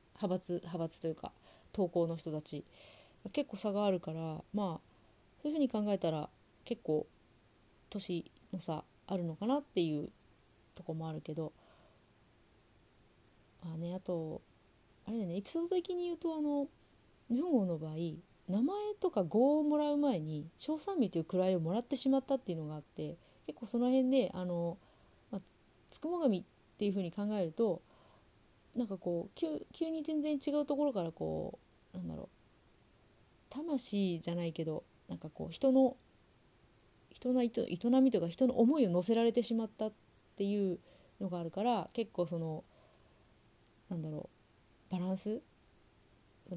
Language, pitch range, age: Japanese, 160-240 Hz, 30-49